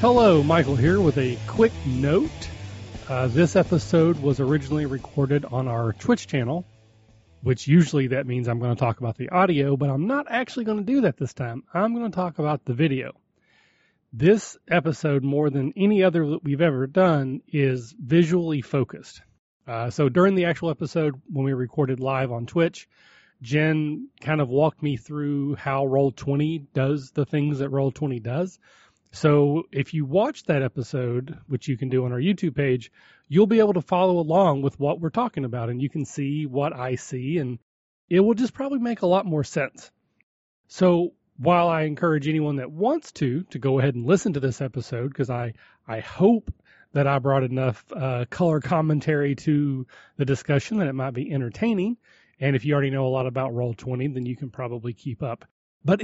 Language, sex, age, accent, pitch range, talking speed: English, male, 30-49, American, 130-170 Hz, 190 wpm